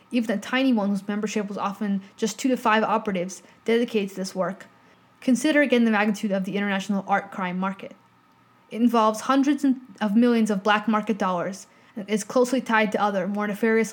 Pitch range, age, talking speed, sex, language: 200-235 Hz, 20-39, 185 wpm, female, English